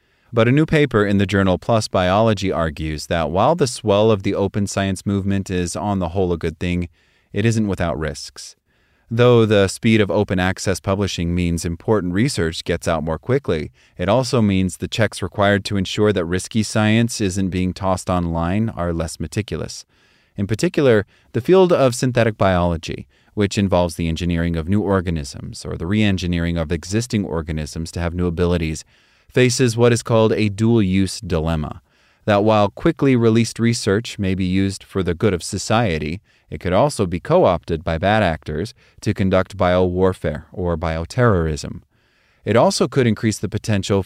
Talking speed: 170 wpm